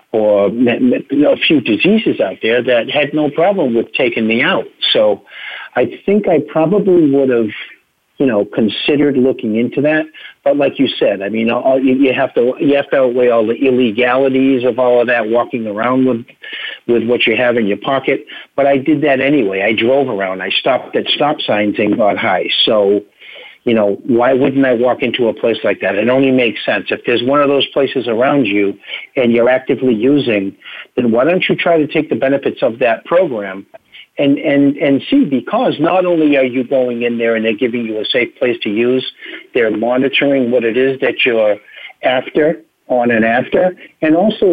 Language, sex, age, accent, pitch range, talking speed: English, male, 50-69, American, 120-150 Hz, 200 wpm